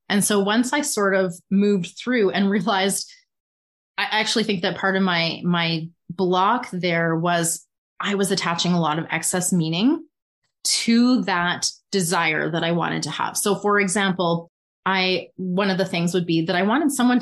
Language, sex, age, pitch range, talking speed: English, female, 30-49, 170-225 Hz, 180 wpm